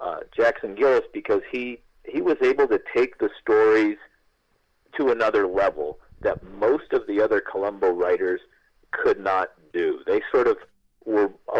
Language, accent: English, American